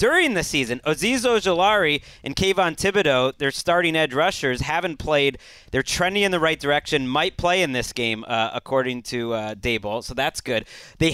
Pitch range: 130-180 Hz